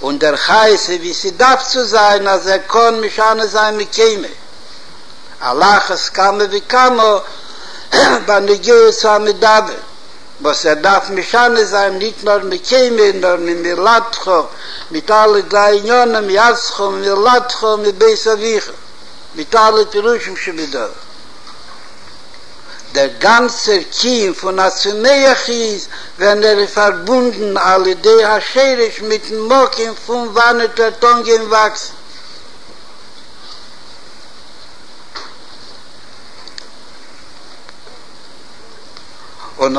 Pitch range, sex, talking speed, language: 195-240 Hz, male, 80 wpm, Hebrew